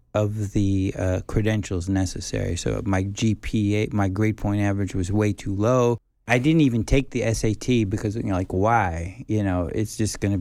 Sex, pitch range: male, 100-120 Hz